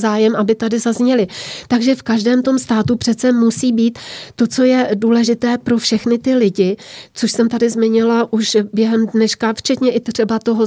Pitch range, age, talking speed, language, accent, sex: 210-235 Hz, 30-49, 175 wpm, Czech, native, female